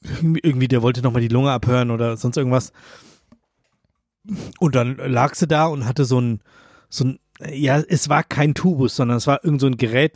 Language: German